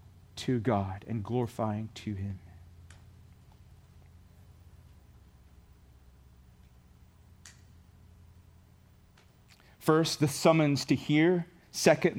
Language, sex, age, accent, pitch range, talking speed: English, male, 40-59, American, 100-165 Hz, 60 wpm